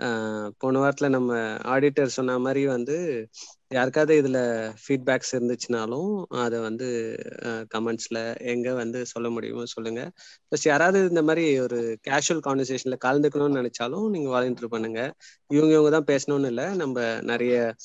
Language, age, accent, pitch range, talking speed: Tamil, 20-39, native, 120-145 Hz, 130 wpm